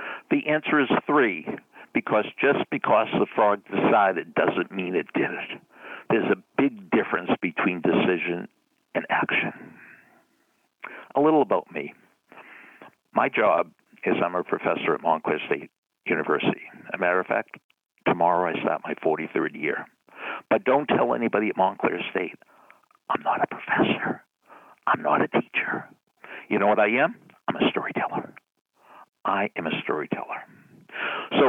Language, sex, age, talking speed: English, male, 60-79, 145 wpm